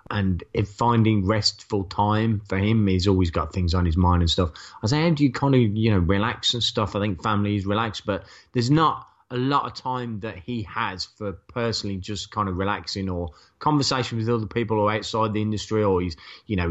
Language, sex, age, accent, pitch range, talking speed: English, male, 30-49, British, 90-115 Hz, 225 wpm